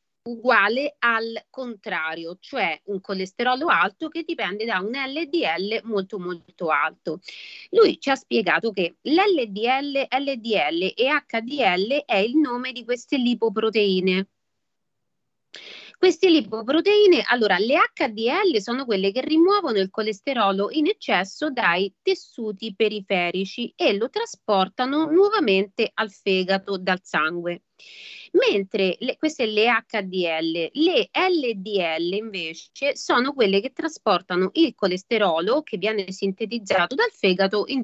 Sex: female